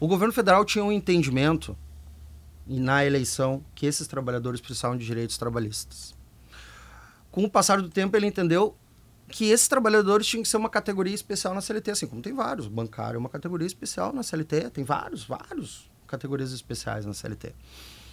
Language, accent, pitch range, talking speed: Portuguese, Brazilian, 135-210 Hz, 170 wpm